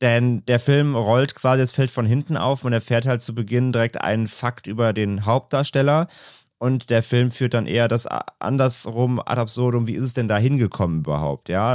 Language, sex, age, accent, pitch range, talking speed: German, male, 30-49, German, 100-120 Hz, 200 wpm